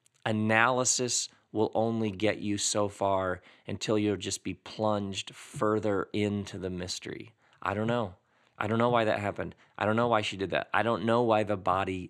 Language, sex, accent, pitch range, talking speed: English, male, American, 95-115 Hz, 190 wpm